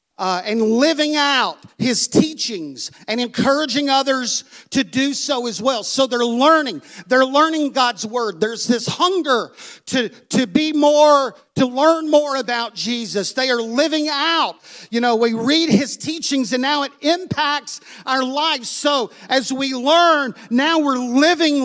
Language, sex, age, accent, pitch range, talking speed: English, male, 50-69, American, 235-290 Hz, 155 wpm